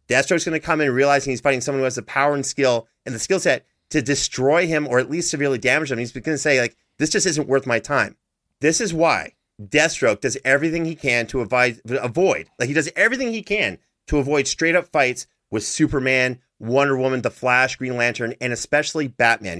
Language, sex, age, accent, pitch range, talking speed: English, male, 30-49, American, 115-145 Hz, 215 wpm